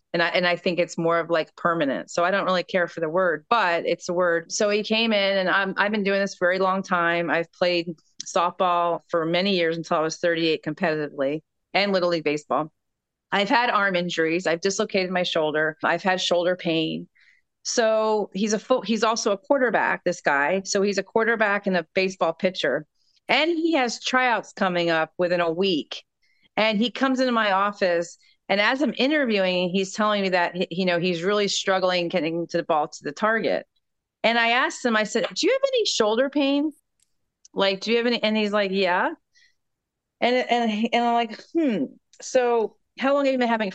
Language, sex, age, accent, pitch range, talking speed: English, female, 40-59, American, 175-235 Hz, 210 wpm